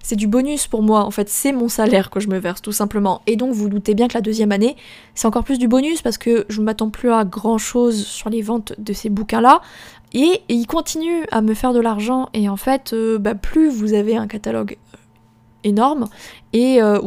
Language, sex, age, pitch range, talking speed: French, female, 20-39, 215-260 Hz, 240 wpm